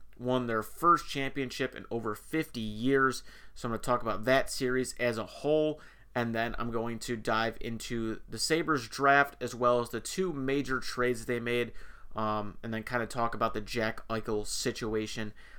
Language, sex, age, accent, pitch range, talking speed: English, male, 30-49, American, 115-135 Hz, 190 wpm